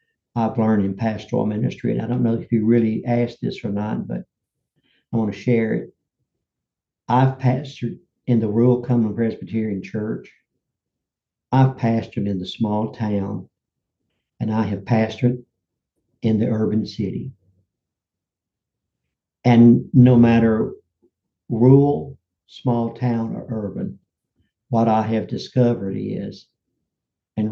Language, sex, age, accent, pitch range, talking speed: English, male, 60-79, American, 105-120 Hz, 125 wpm